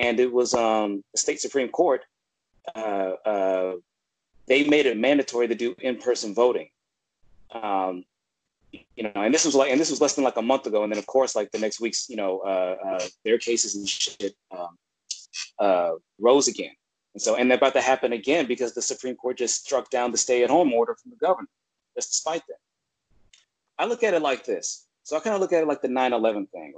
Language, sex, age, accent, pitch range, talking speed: English, male, 30-49, American, 110-145 Hz, 215 wpm